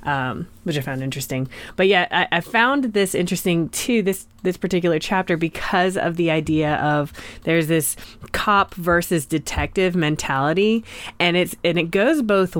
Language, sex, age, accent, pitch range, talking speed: English, female, 20-39, American, 140-175 Hz, 160 wpm